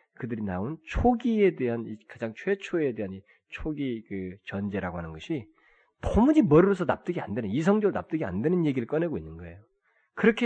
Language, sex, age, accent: Korean, male, 20-39, native